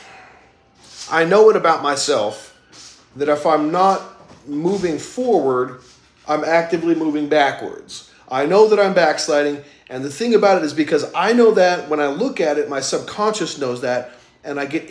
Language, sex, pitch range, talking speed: English, male, 145-190 Hz, 170 wpm